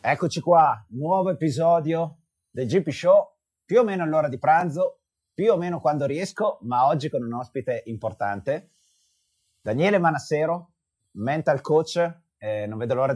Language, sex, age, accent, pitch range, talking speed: Italian, male, 30-49, native, 110-155 Hz, 145 wpm